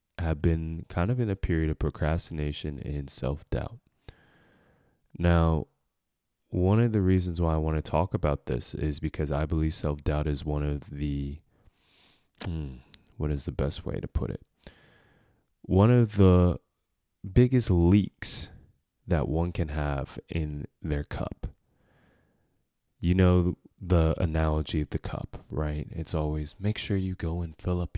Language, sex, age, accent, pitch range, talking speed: English, male, 20-39, American, 75-95 Hz, 150 wpm